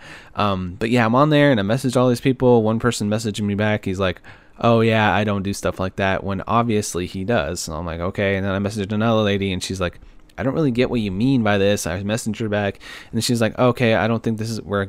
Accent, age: American, 20-39